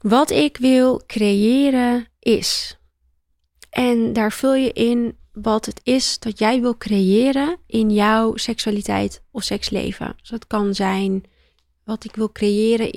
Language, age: Dutch, 30-49